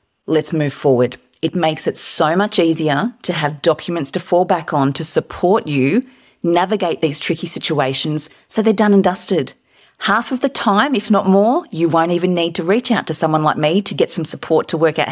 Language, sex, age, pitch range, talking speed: English, female, 40-59, 140-195 Hz, 210 wpm